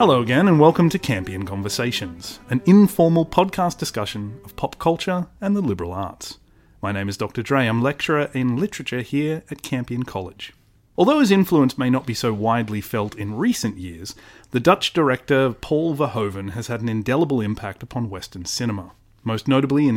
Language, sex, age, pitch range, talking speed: English, male, 30-49, 105-140 Hz, 175 wpm